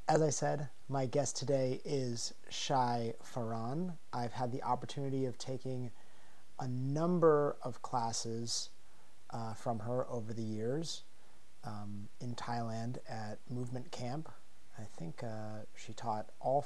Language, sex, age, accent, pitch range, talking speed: English, male, 30-49, American, 120-145 Hz, 135 wpm